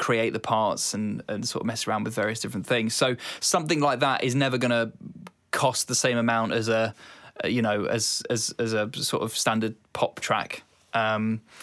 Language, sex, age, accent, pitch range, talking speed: English, male, 20-39, British, 115-135 Hz, 200 wpm